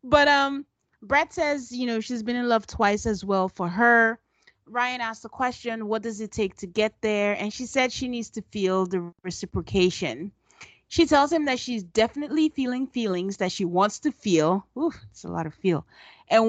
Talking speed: 200 wpm